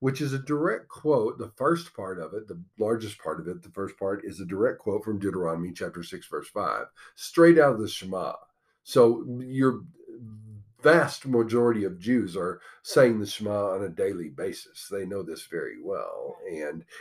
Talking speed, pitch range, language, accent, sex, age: 185 wpm, 105-140 Hz, English, American, male, 50-69